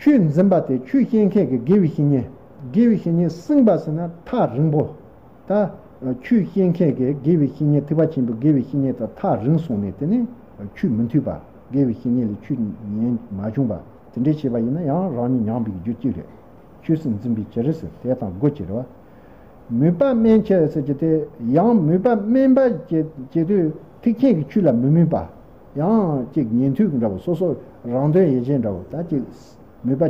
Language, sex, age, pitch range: English, male, 60-79, 125-190 Hz